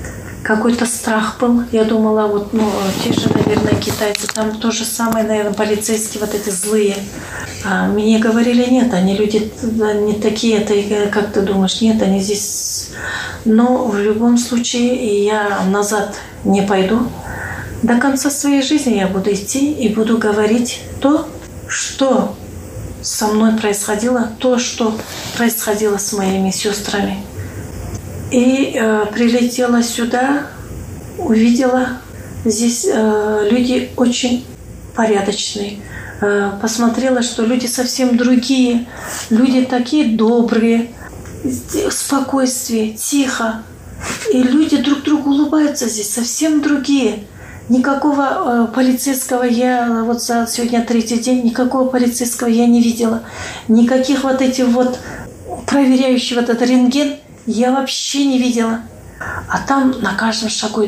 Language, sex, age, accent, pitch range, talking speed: Russian, female, 30-49, native, 215-255 Hz, 120 wpm